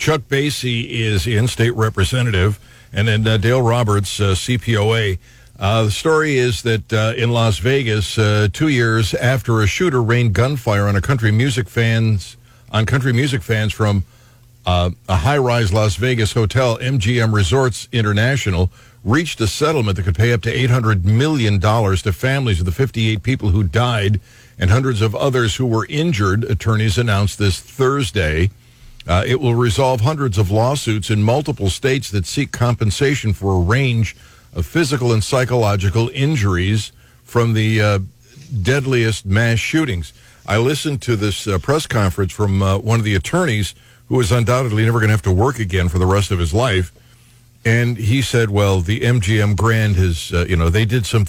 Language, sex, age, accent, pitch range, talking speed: English, male, 60-79, American, 100-125 Hz, 170 wpm